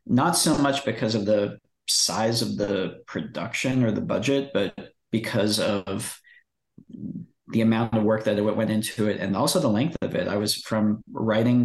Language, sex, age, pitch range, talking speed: English, male, 40-59, 105-120 Hz, 175 wpm